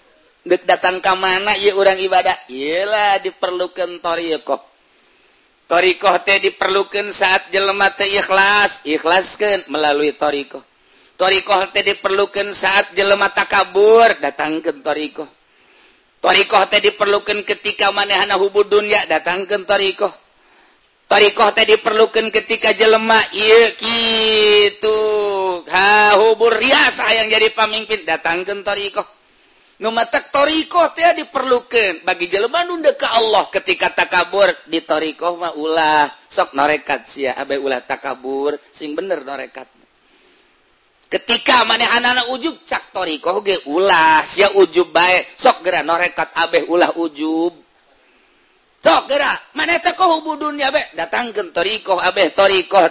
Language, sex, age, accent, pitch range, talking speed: Indonesian, male, 50-69, native, 180-220 Hz, 120 wpm